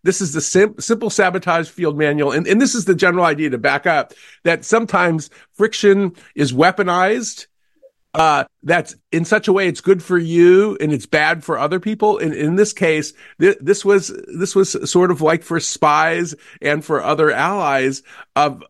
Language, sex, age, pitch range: English, male, 50-69, 150-195 Hz